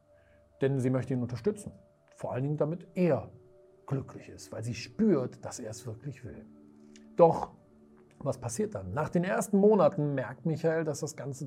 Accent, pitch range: German, 115-170 Hz